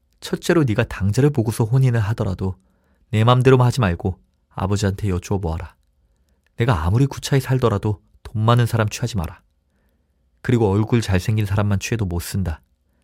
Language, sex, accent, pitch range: Korean, male, native, 85-120 Hz